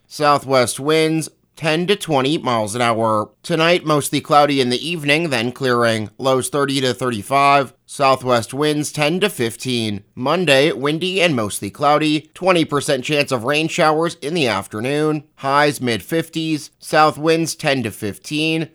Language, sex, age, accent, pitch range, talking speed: English, male, 30-49, American, 125-160 Hz, 145 wpm